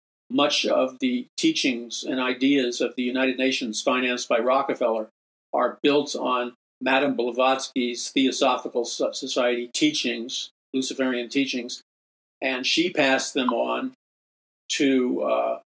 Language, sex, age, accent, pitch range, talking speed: English, male, 50-69, American, 125-145 Hz, 115 wpm